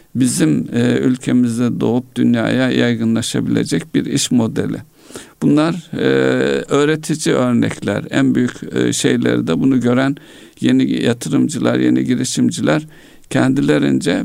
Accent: native